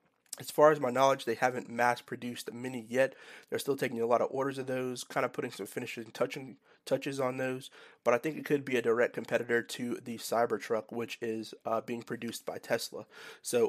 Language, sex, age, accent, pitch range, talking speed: English, male, 30-49, American, 115-130 Hz, 210 wpm